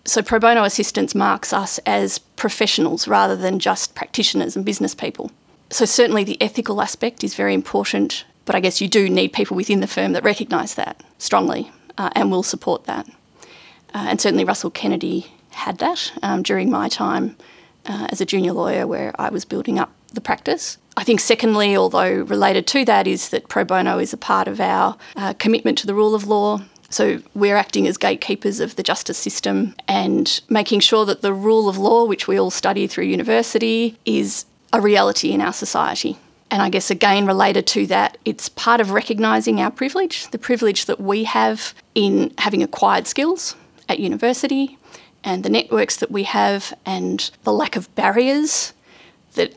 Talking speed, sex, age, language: 185 wpm, female, 30-49, English